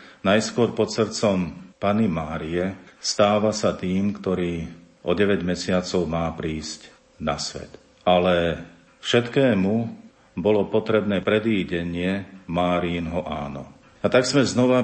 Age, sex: 50-69, male